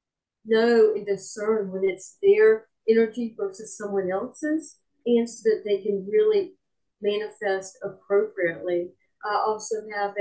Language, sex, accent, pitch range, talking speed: English, female, American, 195-235 Hz, 125 wpm